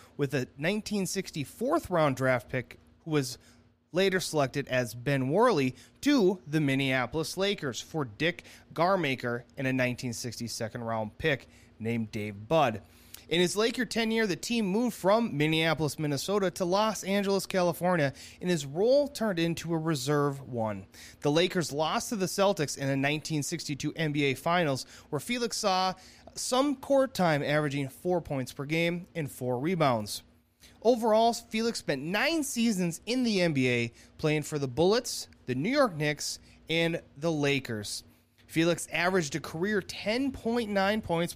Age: 30-49